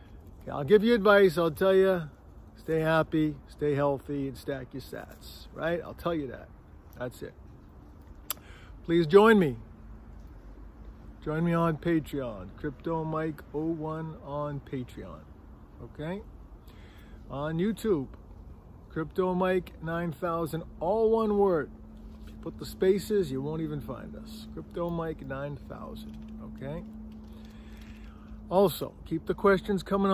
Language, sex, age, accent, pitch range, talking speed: English, male, 50-69, American, 120-175 Hz, 110 wpm